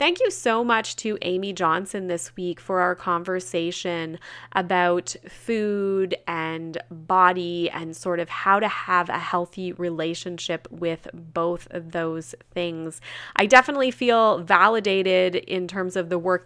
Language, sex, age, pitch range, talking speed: English, female, 20-39, 170-195 Hz, 140 wpm